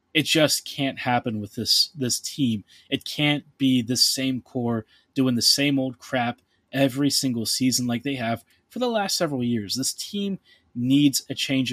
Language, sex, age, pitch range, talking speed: English, male, 20-39, 120-145 Hz, 180 wpm